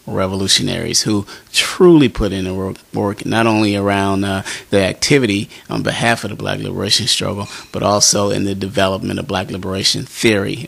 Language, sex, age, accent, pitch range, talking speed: English, male, 30-49, American, 100-120 Hz, 170 wpm